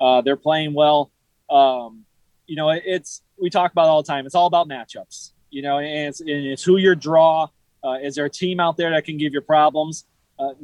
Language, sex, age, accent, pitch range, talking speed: English, male, 20-39, American, 150-180 Hz, 235 wpm